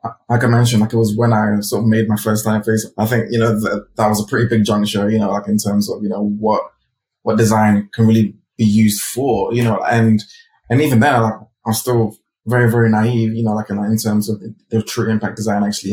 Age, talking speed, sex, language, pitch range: 20-39, 250 wpm, male, English, 105-115 Hz